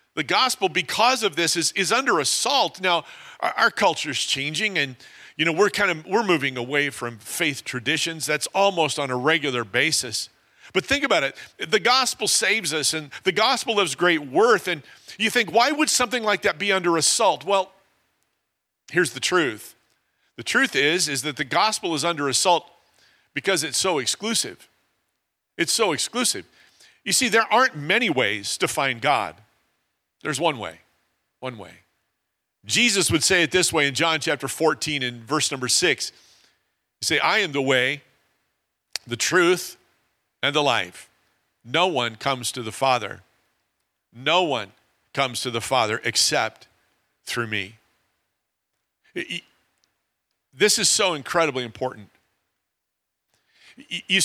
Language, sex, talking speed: English, male, 155 wpm